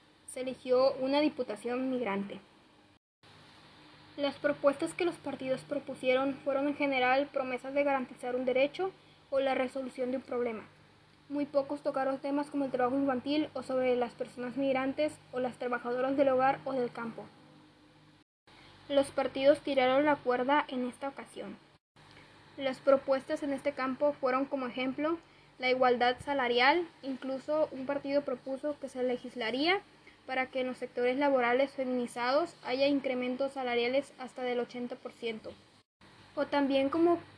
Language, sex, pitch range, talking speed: Spanish, female, 250-280 Hz, 140 wpm